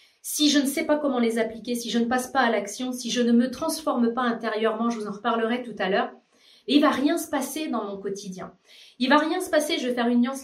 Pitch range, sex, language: 225-290 Hz, female, French